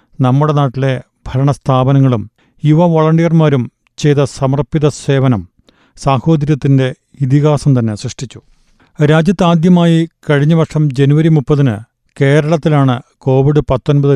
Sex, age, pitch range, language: male, 40-59, 130-150 Hz, Malayalam